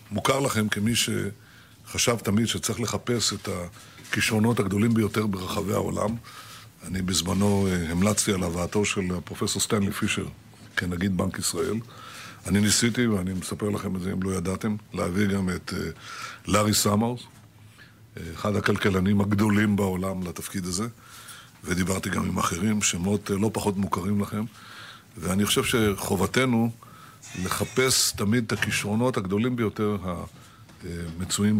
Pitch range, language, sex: 95-115 Hz, Hebrew, male